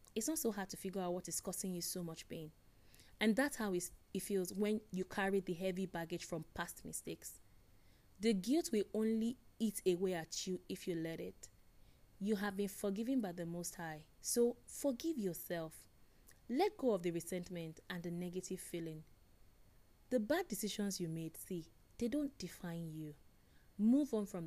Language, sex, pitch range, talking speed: English, female, 160-210 Hz, 180 wpm